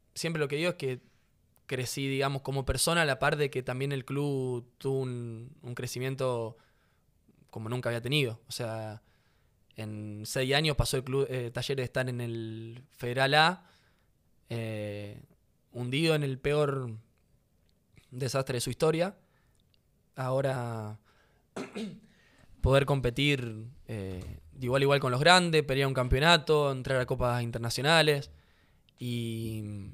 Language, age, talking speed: Spanish, 20-39, 140 wpm